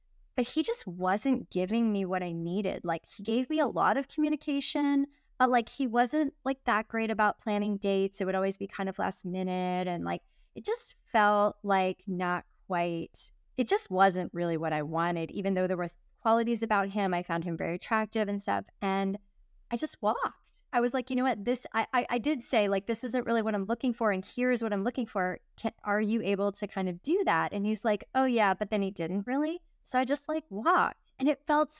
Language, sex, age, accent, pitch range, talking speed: English, female, 20-39, American, 185-230 Hz, 230 wpm